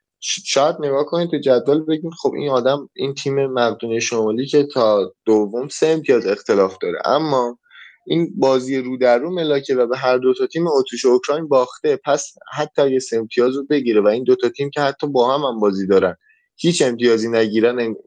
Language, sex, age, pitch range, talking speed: Persian, male, 20-39, 120-150 Hz, 185 wpm